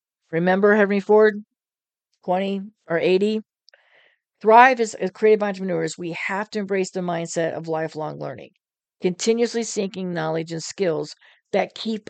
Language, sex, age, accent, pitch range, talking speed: English, female, 50-69, American, 165-205 Hz, 135 wpm